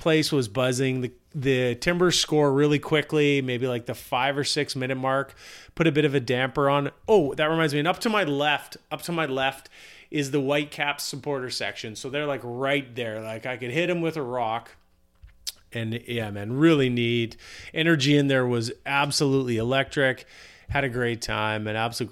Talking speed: 200 wpm